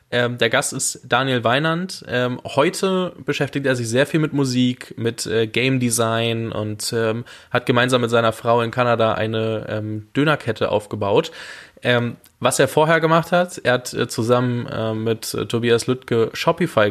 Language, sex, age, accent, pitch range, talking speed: German, male, 10-29, German, 110-130 Hz, 140 wpm